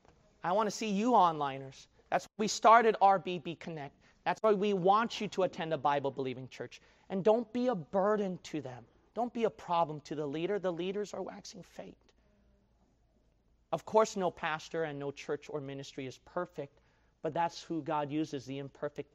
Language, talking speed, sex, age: English, 185 wpm, male, 30-49